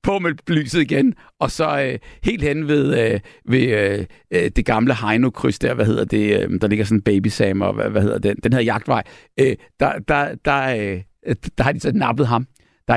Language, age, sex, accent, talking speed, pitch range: Danish, 60-79, male, native, 215 wpm, 120-160 Hz